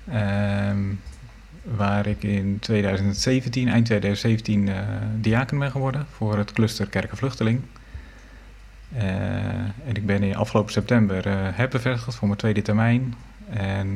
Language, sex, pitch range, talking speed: Dutch, male, 100-115 Hz, 130 wpm